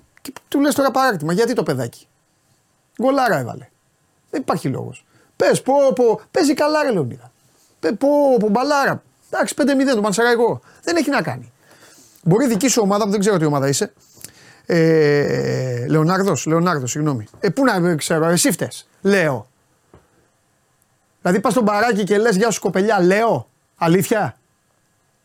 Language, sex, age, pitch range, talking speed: Greek, male, 30-49, 150-230 Hz, 150 wpm